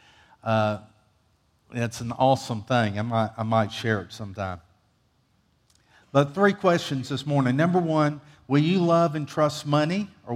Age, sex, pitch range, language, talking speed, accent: 50-69, male, 125-165 Hz, English, 145 wpm, American